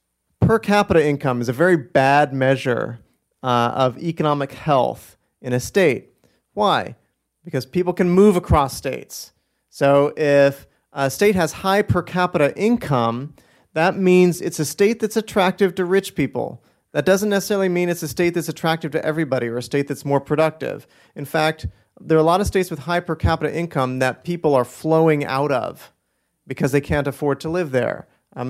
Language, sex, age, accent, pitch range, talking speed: English, male, 40-59, American, 130-175 Hz, 180 wpm